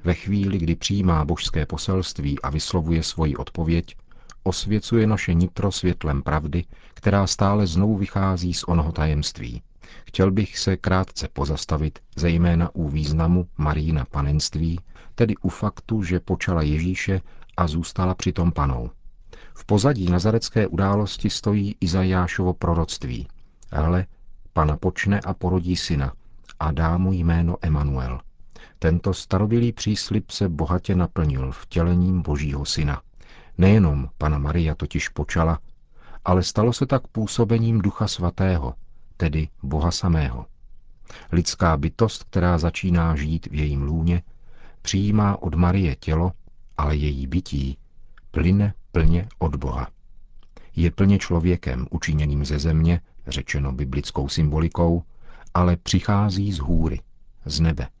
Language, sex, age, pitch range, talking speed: Czech, male, 40-59, 75-95 Hz, 125 wpm